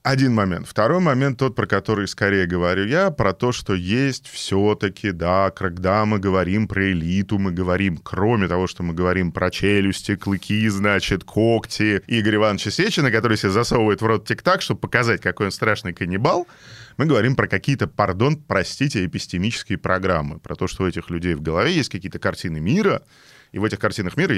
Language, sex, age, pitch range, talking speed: Russian, male, 20-39, 95-125 Hz, 180 wpm